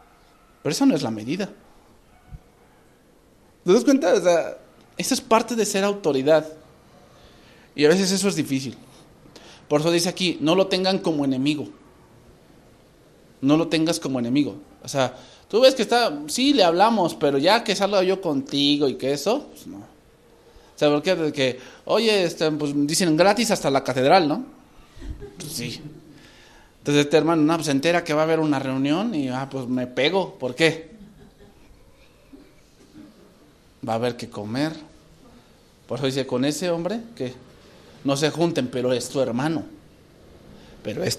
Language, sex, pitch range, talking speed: English, male, 135-190 Hz, 165 wpm